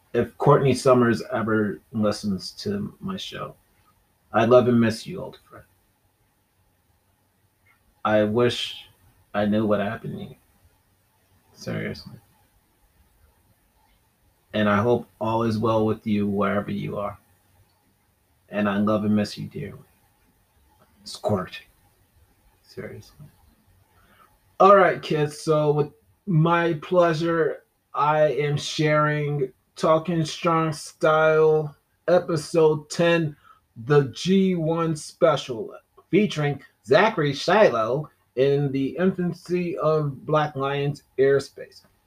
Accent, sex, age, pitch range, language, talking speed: American, male, 30-49, 105-160 Hz, English, 105 wpm